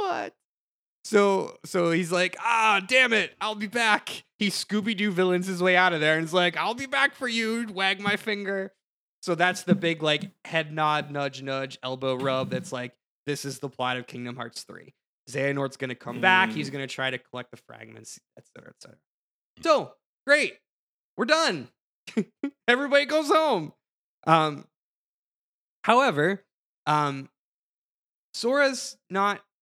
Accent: American